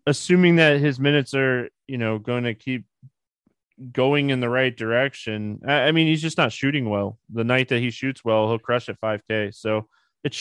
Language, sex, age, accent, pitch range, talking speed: English, male, 20-39, American, 115-150 Hz, 190 wpm